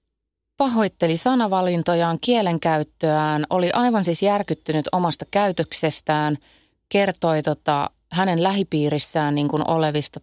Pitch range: 150-190 Hz